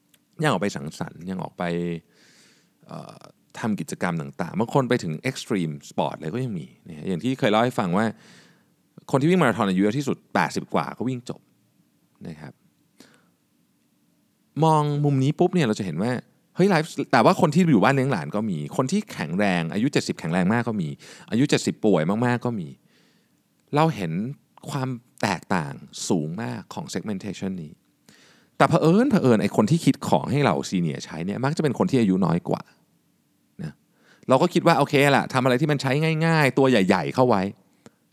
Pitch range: 105-165 Hz